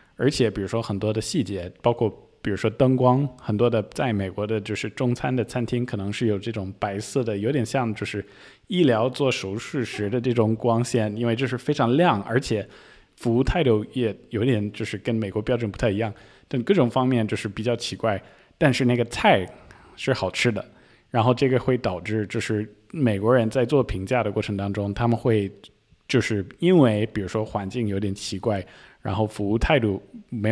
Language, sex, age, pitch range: Chinese, male, 20-39, 105-125 Hz